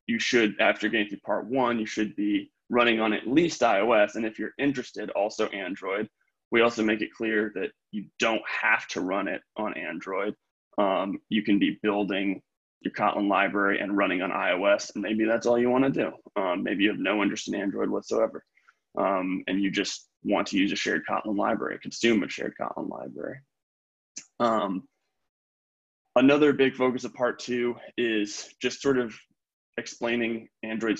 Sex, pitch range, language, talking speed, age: male, 105-120 Hz, English, 180 wpm, 20-39